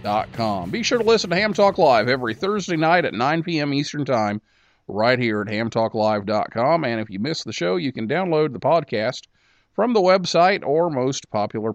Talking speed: 200 wpm